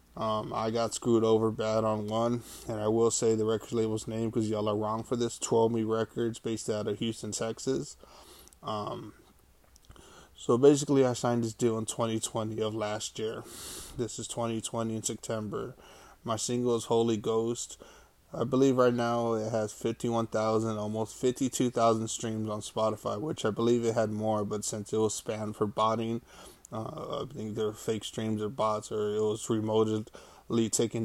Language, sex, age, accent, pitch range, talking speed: English, male, 20-39, American, 110-115 Hz, 175 wpm